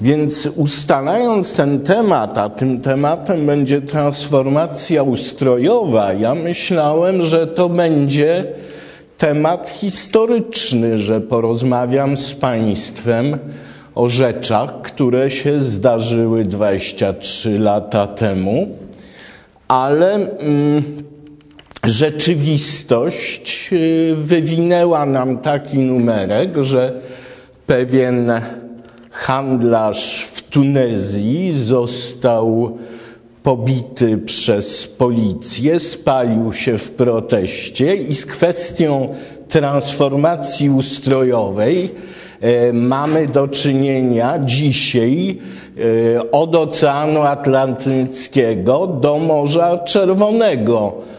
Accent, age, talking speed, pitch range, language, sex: native, 50-69, 75 wpm, 120-150 Hz, Polish, male